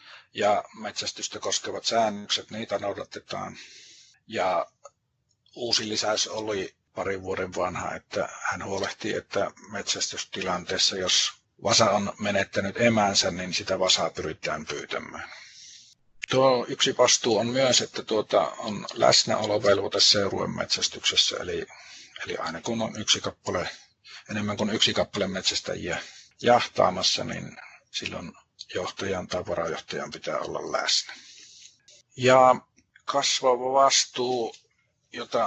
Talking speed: 110 wpm